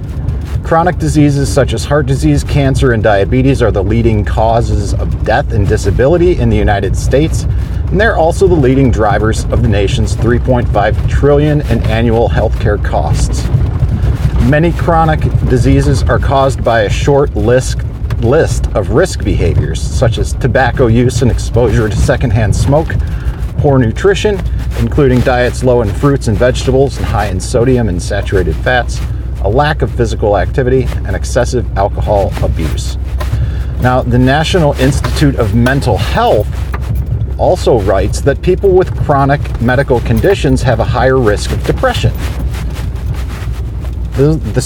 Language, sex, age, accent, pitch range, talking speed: English, male, 40-59, American, 105-135 Hz, 140 wpm